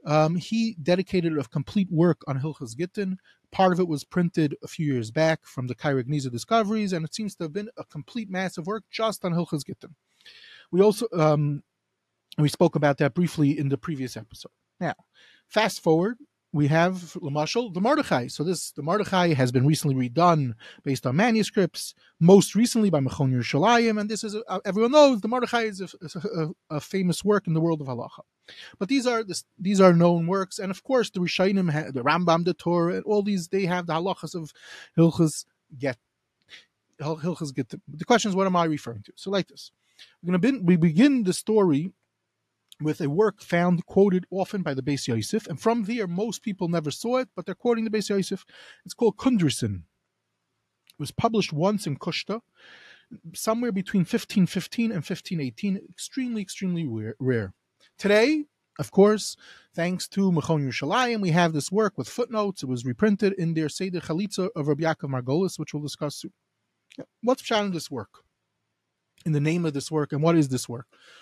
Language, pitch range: English, 150-205 Hz